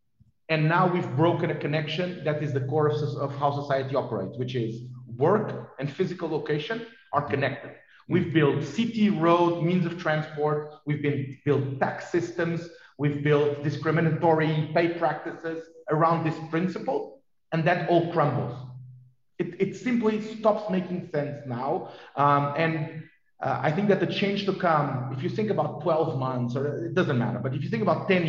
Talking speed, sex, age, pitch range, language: 170 wpm, male, 40-59, 140-175 Hz, English